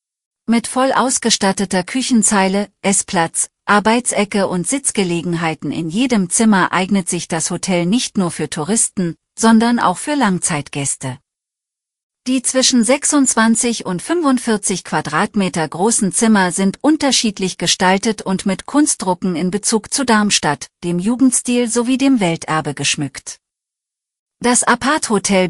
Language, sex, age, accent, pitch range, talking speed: German, female, 40-59, German, 175-230 Hz, 120 wpm